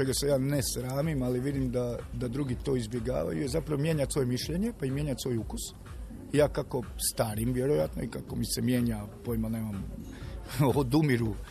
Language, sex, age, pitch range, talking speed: Croatian, male, 40-59, 120-150 Hz, 175 wpm